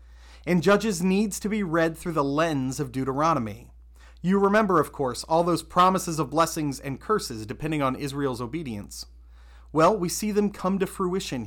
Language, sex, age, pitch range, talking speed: English, male, 30-49, 110-180 Hz, 175 wpm